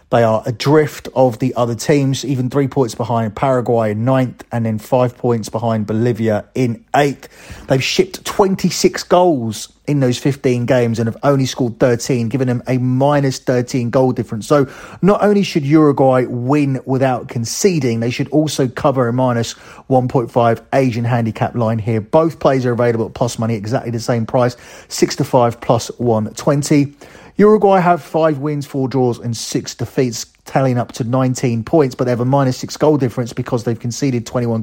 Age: 30-49